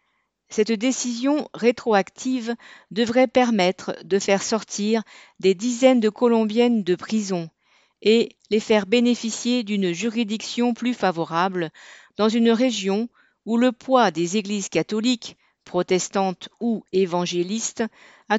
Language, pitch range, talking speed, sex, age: French, 185-235 Hz, 115 wpm, female, 50-69